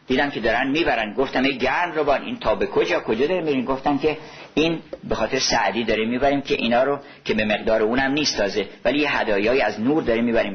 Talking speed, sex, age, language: 220 wpm, male, 50-69, Persian